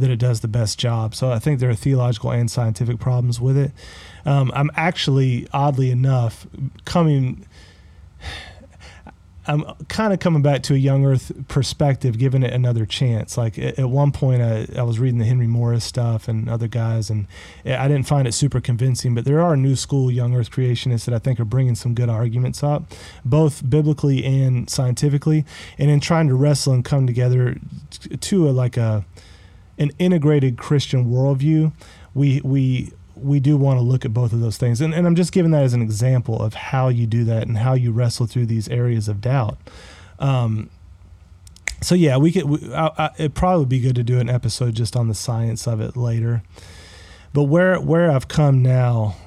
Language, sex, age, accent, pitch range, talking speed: English, male, 30-49, American, 115-140 Hz, 190 wpm